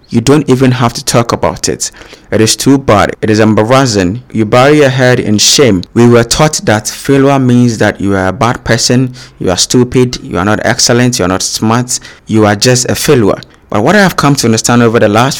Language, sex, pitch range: English, male, 110-130 Hz